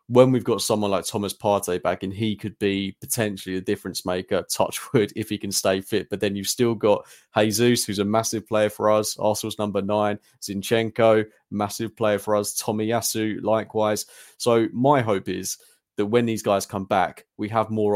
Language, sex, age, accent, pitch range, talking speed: English, male, 20-39, British, 100-115 Hz, 195 wpm